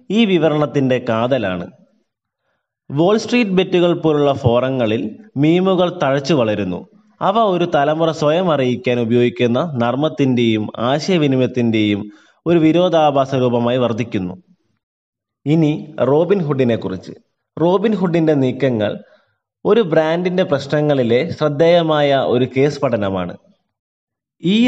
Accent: native